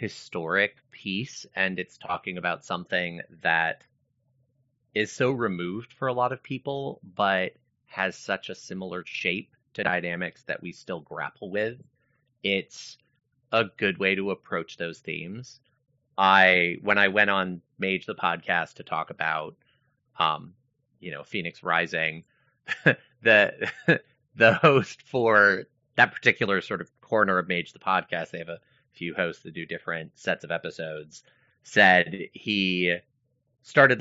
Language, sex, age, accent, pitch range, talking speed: English, male, 30-49, American, 90-130 Hz, 140 wpm